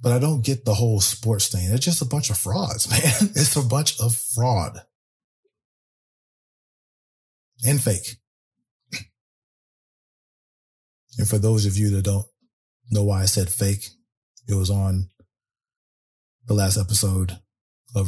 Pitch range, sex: 95-115 Hz, male